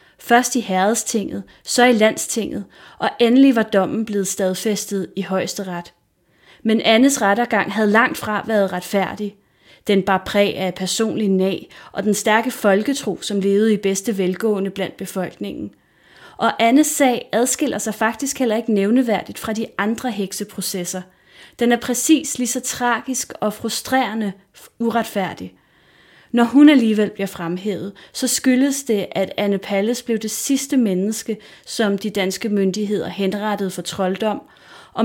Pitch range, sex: 195-240 Hz, female